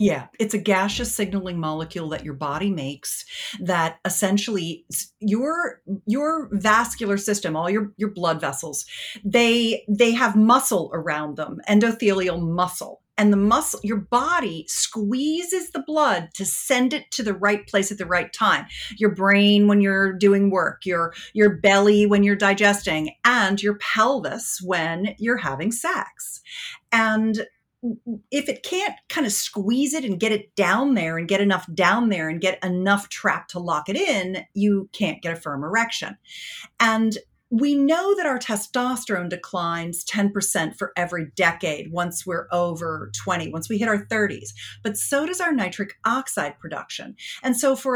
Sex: female